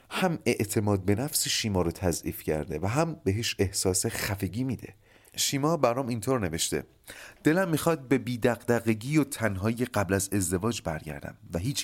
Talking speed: 150 wpm